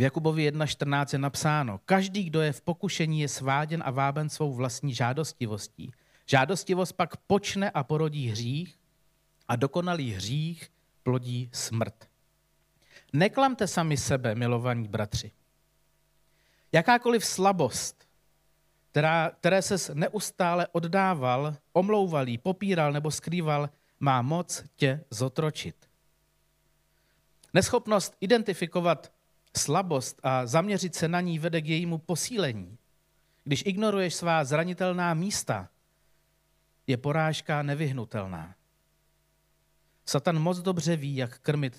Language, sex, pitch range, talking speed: Czech, male, 135-175 Hz, 105 wpm